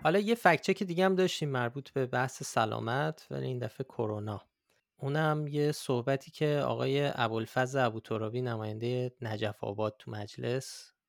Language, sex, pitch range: Persian, male, 115-135 Hz